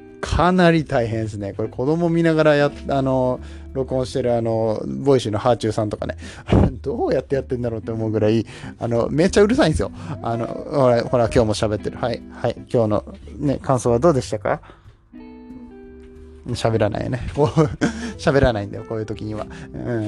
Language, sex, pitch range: Japanese, male, 105-130 Hz